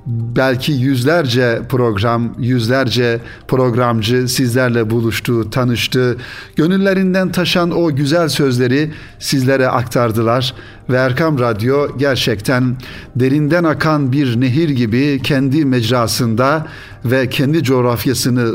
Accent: native